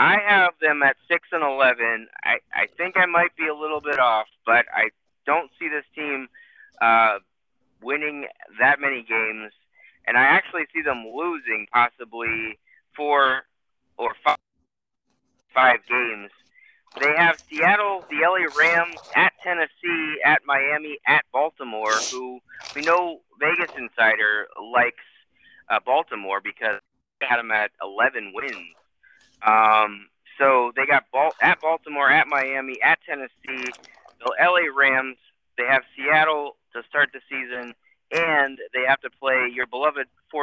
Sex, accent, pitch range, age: male, American, 120-155 Hz, 30-49